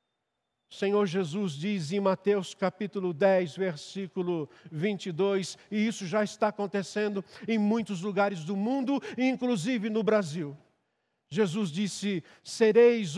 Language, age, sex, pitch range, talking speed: Portuguese, 50-69, male, 195-250 Hz, 115 wpm